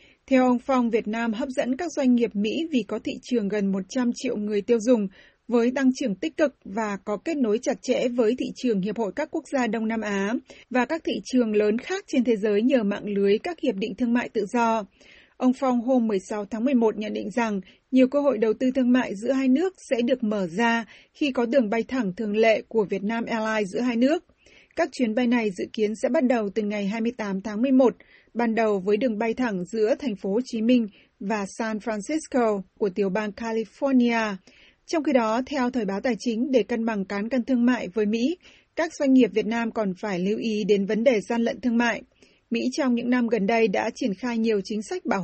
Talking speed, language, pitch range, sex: 235 wpm, Vietnamese, 215-255 Hz, female